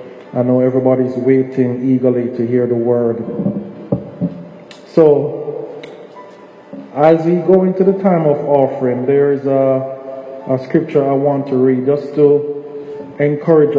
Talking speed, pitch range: 130 wpm, 130-150 Hz